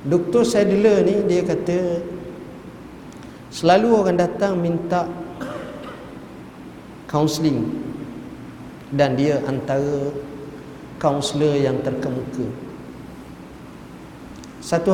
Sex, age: male, 50-69